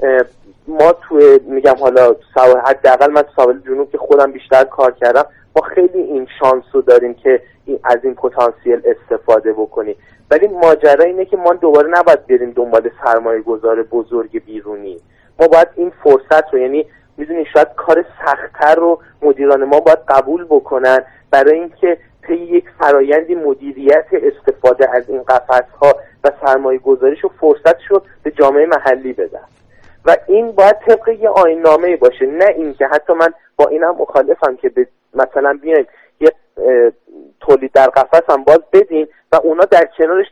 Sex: male